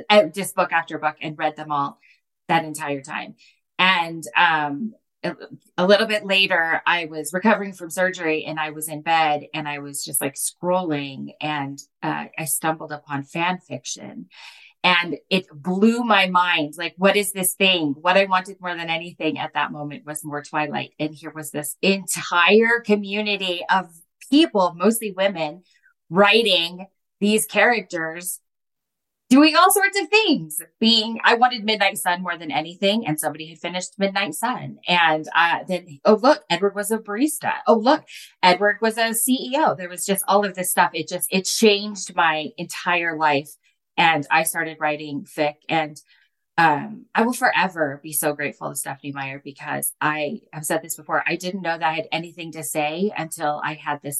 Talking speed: 175 wpm